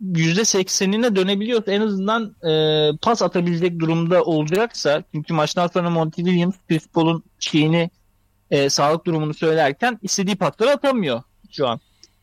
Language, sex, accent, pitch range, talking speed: Turkish, male, native, 150-215 Hz, 110 wpm